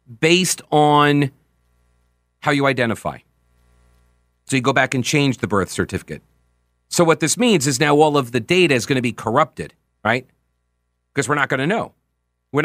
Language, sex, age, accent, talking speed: English, male, 40-59, American, 175 wpm